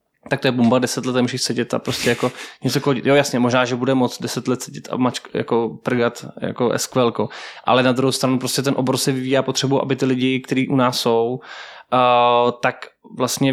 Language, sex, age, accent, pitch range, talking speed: Czech, male, 20-39, native, 125-140 Hz, 200 wpm